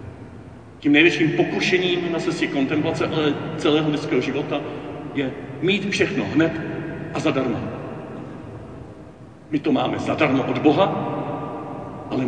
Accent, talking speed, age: native, 110 wpm, 50-69